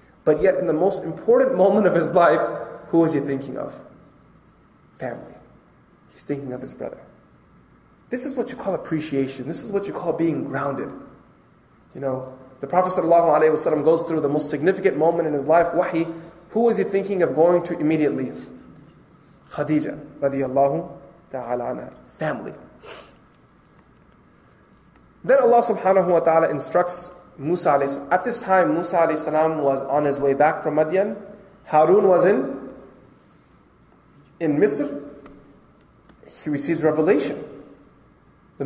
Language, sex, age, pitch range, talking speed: English, male, 20-39, 140-185 Hz, 135 wpm